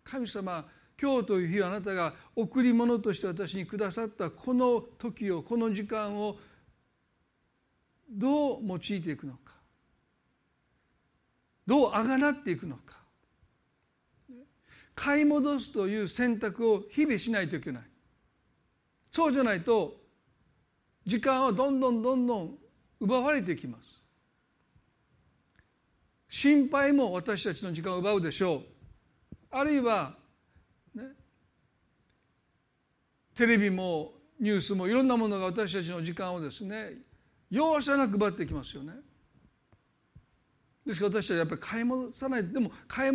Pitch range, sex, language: 195-255 Hz, male, Japanese